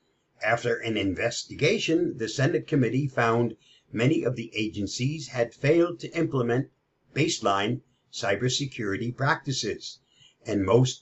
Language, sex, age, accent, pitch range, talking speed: English, male, 50-69, American, 110-140 Hz, 110 wpm